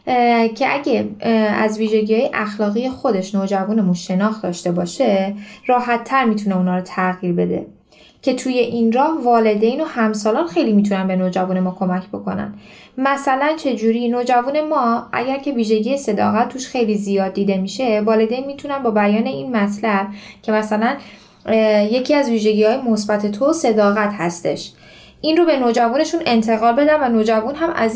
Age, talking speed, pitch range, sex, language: 10-29, 150 wpm, 205-270 Hz, female, Persian